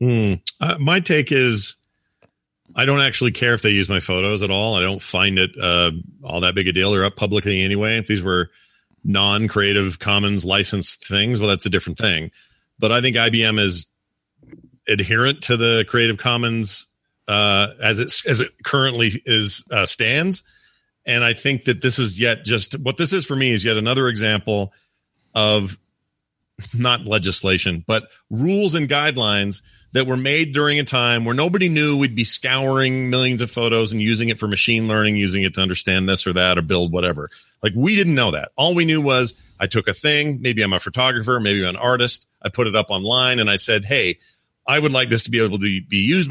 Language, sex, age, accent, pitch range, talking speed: English, male, 40-59, American, 100-130 Hz, 200 wpm